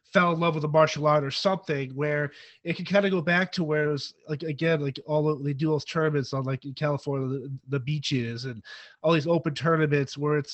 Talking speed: 245 wpm